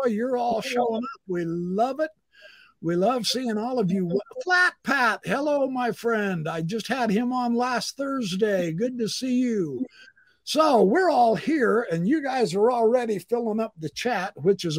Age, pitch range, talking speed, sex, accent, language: 60-79, 150-255 Hz, 180 wpm, male, American, English